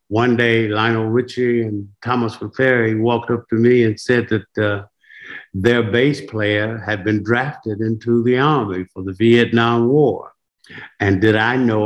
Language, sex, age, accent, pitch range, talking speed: English, male, 60-79, American, 100-120 Hz, 160 wpm